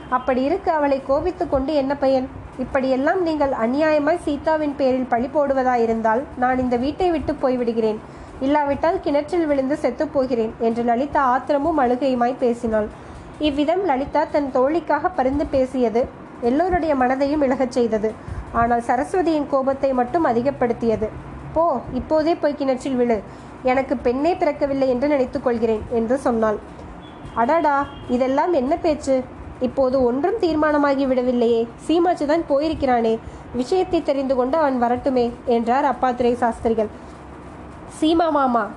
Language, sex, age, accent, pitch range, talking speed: Tamil, female, 20-39, native, 245-300 Hz, 120 wpm